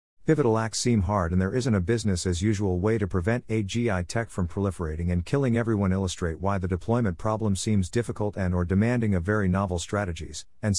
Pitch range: 90-115 Hz